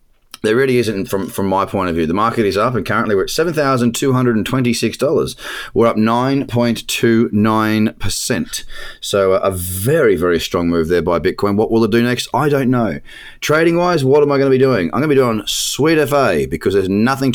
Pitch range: 105-135 Hz